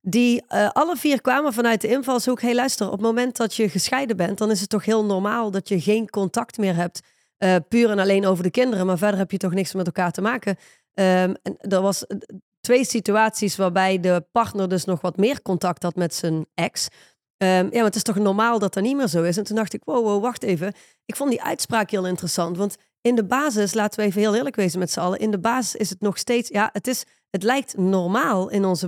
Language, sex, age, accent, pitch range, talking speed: Dutch, female, 30-49, Dutch, 190-230 Hz, 245 wpm